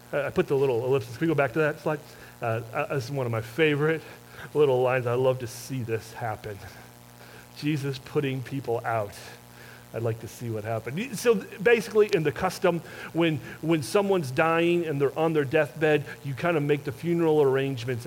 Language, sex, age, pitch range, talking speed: English, male, 40-59, 135-185 Hz, 195 wpm